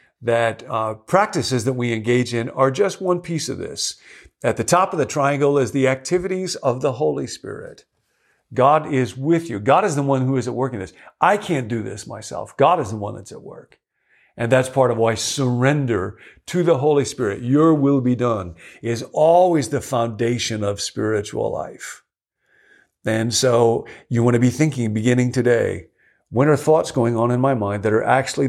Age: 50-69